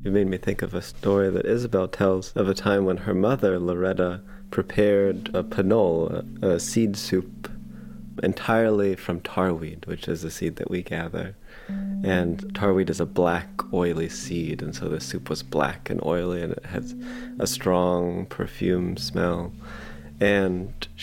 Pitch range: 90-105 Hz